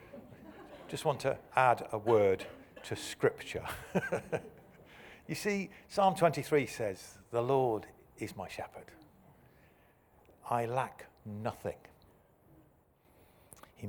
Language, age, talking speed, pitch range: English, 50-69, 95 wpm, 100-140 Hz